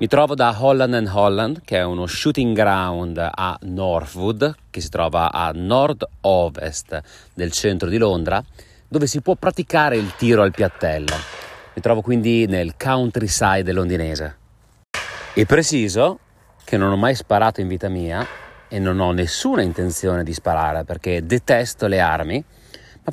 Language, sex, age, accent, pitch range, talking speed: Italian, male, 30-49, native, 85-115 Hz, 150 wpm